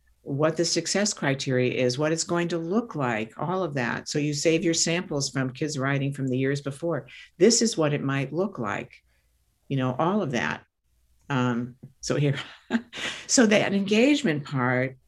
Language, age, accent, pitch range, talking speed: English, 60-79, American, 130-165 Hz, 180 wpm